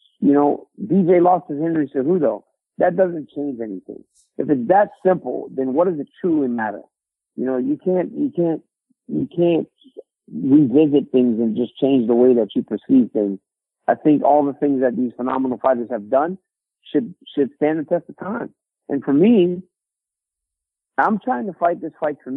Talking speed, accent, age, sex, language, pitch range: 180 wpm, American, 50-69, male, English, 135-200 Hz